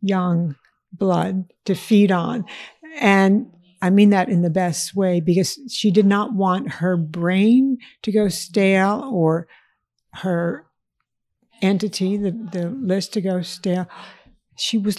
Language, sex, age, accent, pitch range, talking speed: English, female, 60-79, American, 165-195 Hz, 135 wpm